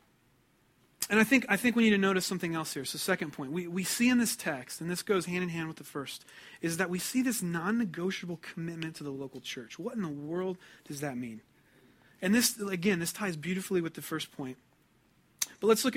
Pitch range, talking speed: 145-190 Hz, 230 wpm